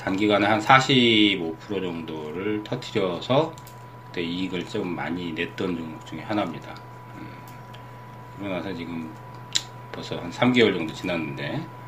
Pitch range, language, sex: 100-125 Hz, Korean, male